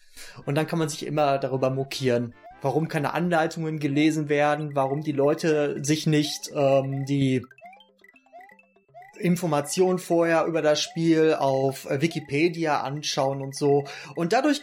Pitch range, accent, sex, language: 155-215 Hz, German, male, German